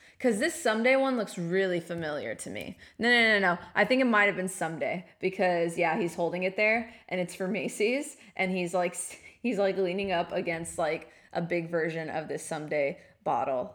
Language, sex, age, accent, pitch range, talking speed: English, female, 20-39, American, 170-220 Hz, 200 wpm